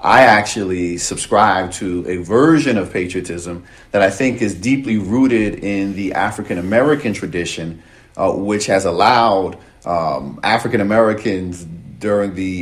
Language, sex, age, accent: English, male, 40-59, American